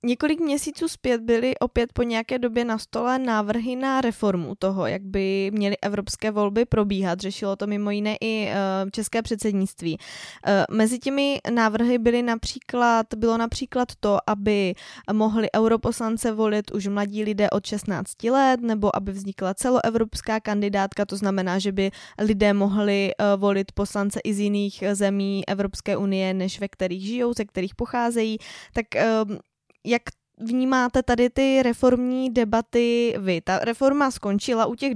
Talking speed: 145 wpm